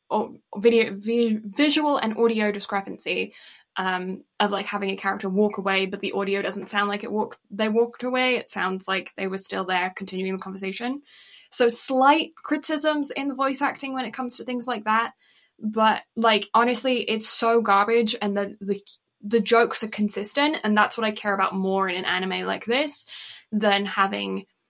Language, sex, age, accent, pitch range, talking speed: English, female, 10-29, British, 195-230 Hz, 185 wpm